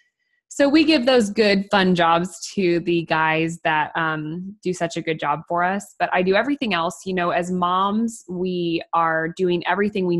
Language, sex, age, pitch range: English, female, 20-39, 160-185 Hz